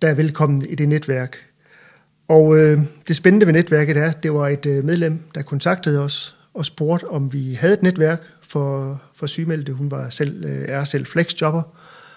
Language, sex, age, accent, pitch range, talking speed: Danish, male, 40-59, native, 145-170 Hz, 185 wpm